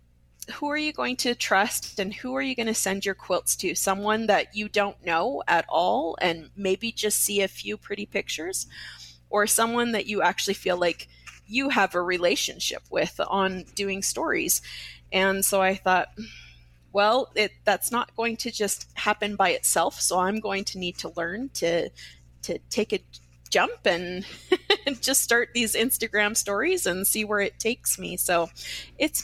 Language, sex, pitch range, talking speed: English, female, 180-225 Hz, 175 wpm